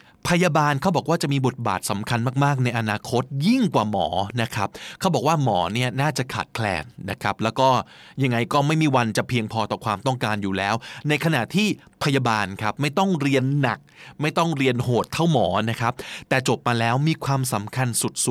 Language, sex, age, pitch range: Thai, male, 20-39, 115-145 Hz